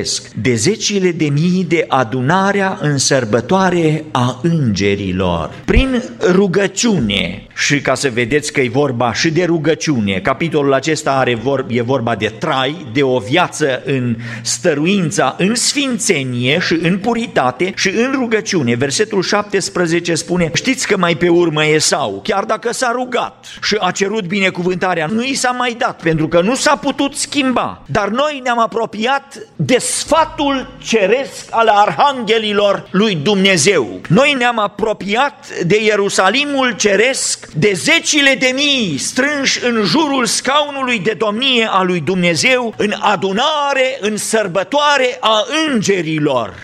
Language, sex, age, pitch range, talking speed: Romanian, male, 50-69, 160-250 Hz, 140 wpm